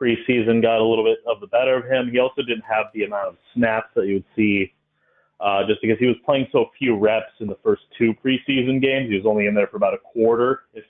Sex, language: male, English